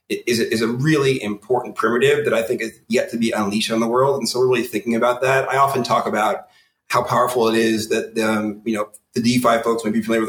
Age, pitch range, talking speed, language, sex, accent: 30-49, 110-125 Hz, 245 wpm, English, male, American